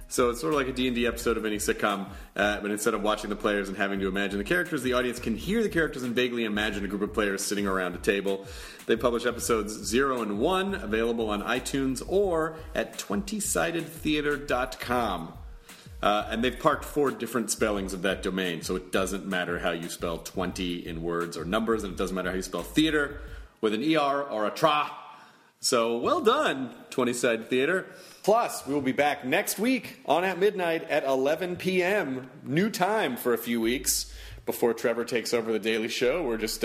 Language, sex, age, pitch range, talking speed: English, male, 30-49, 105-155 Hz, 200 wpm